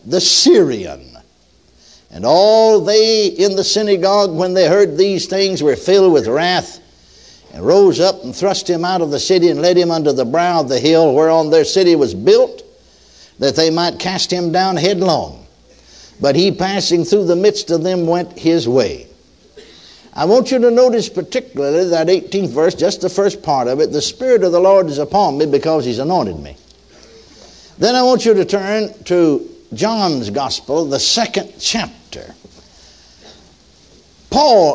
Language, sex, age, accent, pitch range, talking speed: English, male, 60-79, American, 160-210 Hz, 170 wpm